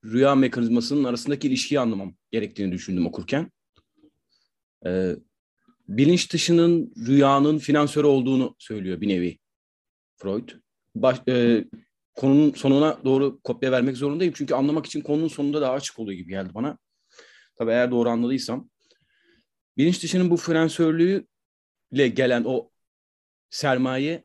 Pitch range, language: 115-155 Hz, Turkish